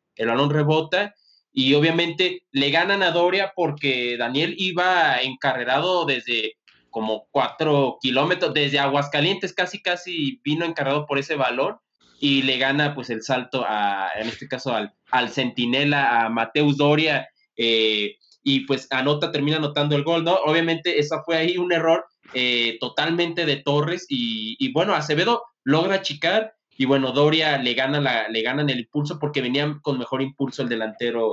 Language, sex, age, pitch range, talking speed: Spanish, male, 20-39, 135-170 Hz, 160 wpm